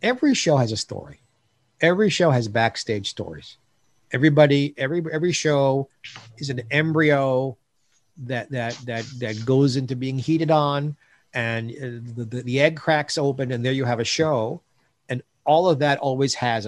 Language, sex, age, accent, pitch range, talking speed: English, male, 50-69, American, 120-150 Hz, 160 wpm